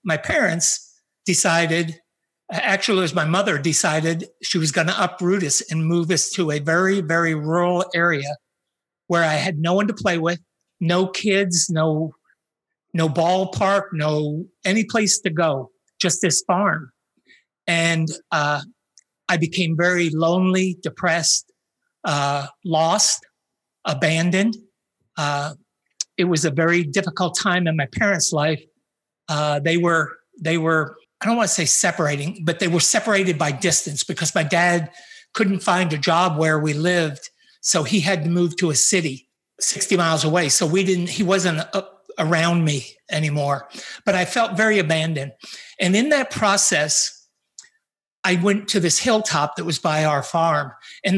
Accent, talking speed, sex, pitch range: American, 155 wpm, male, 160-190 Hz